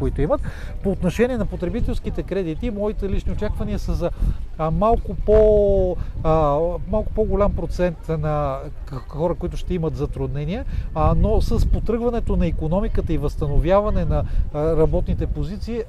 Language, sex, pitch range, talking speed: Bulgarian, male, 160-200 Hz, 135 wpm